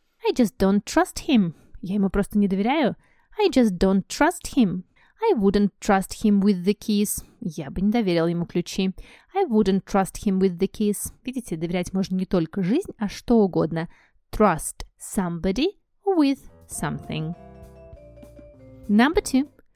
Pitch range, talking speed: 180-235 Hz, 150 wpm